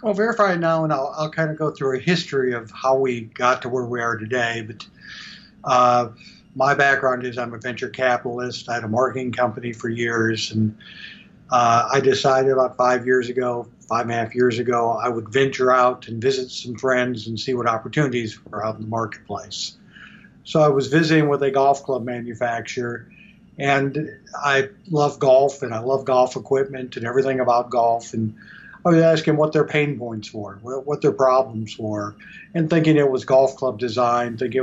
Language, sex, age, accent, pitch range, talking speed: English, male, 50-69, American, 120-150 Hz, 195 wpm